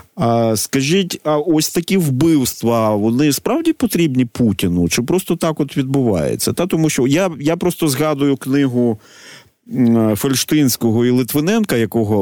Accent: native